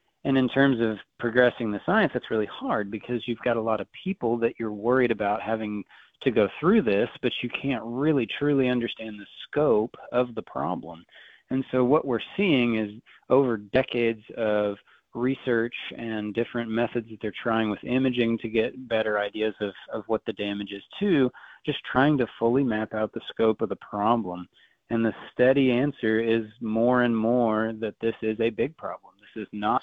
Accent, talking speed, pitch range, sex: American, 190 wpm, 110-125 Hz, male